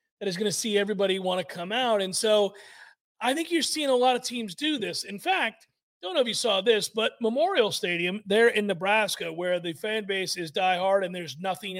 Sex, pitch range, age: male, 190-235 Hz, 40-59